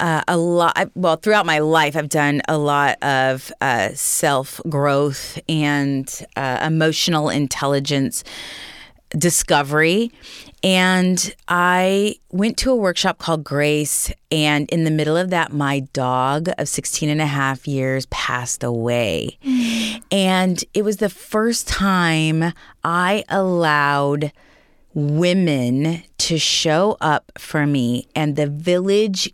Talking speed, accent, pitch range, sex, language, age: 125 wpm, American, 145-185 Hz, female, English, 30-49